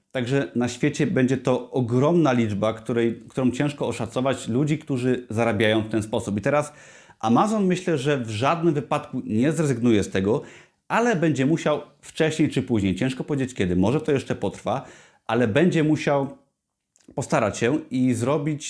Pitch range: 115-145 Hz